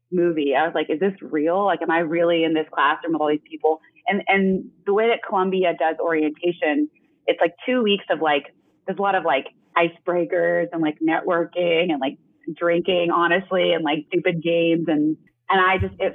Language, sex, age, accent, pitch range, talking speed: English, female, 30-49, American, 160-200 Hz, 200 wpm